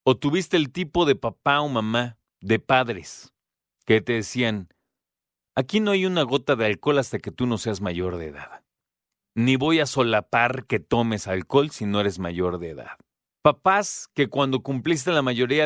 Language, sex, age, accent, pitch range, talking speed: Spanish, male, 40-59, Mexican, 105-150 Hz, 180 wpm